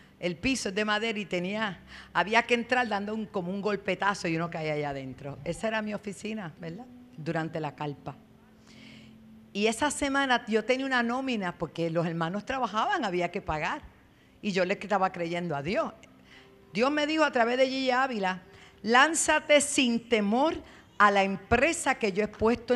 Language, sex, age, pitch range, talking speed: Spanish, female, 50-69, 175-265 Hz, 175 wpm